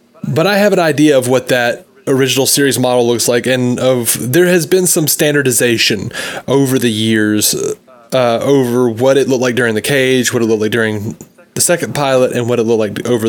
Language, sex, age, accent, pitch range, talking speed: English, male, 20-39, American, 120-155 Hz, 210 wpm